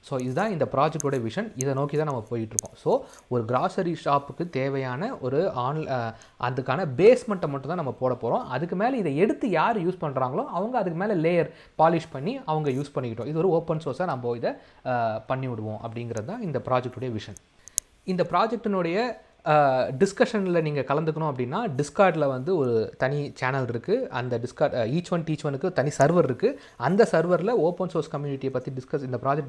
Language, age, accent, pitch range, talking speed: Tamil, 30-49, native, 125-165 Hz, 165 wpm